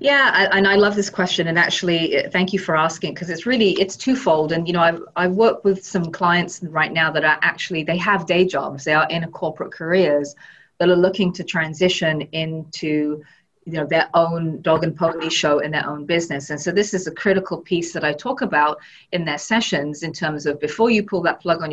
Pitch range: 160-195 Hz